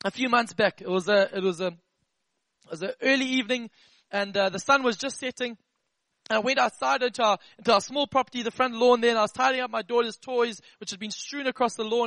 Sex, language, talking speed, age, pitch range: male, English, 250 wpm, 20-39, 215-260 Hz